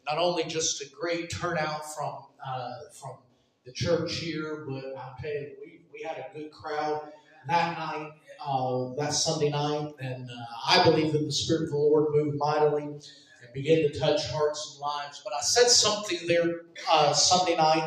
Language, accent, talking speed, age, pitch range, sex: English, American, 185 wpm, 40-59, 150-190 Hz, male